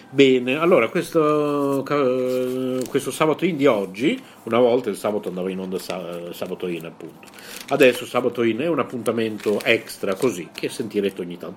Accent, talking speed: native, 155 wpm